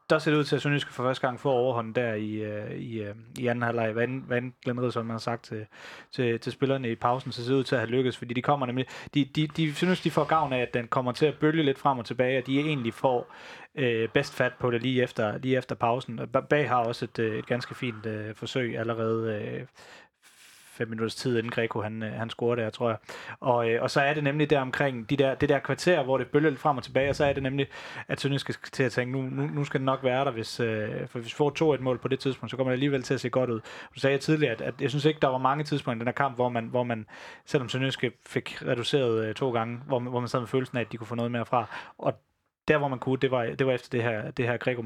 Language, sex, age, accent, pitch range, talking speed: Danish, male, 30-49, native, 115-135 Hz, 280 wpm